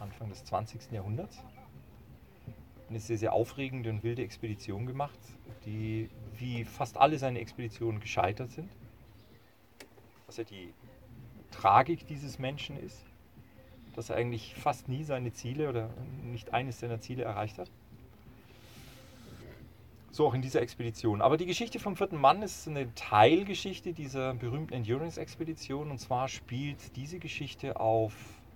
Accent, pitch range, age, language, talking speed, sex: German, 110-130 Hz, 40-59, German, 135 wpm, male